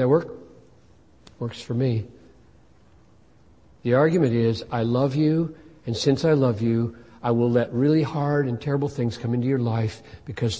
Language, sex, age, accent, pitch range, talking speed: English, male, 50-69, American, 110-135 Hz, 165 wpm